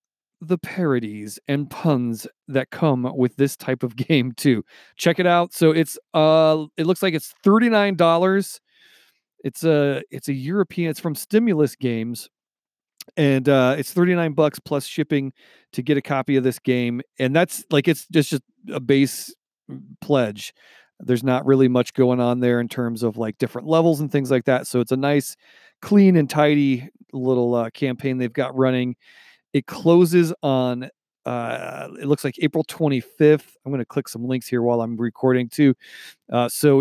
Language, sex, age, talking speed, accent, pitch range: English, male, 40-59, 175 wpm, American, 130-160 Hz